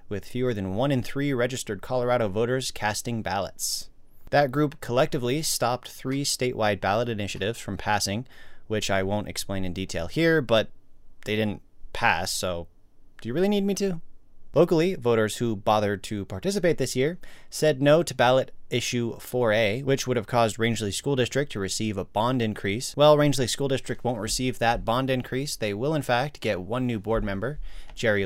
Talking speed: 180 wpm